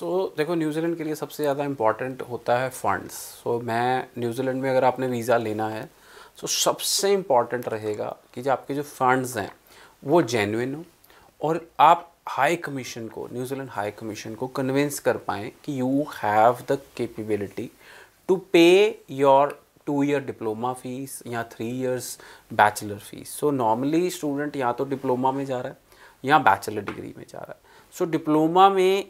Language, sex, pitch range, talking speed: Punjabi, male, 120-155 Hz, 160 wpm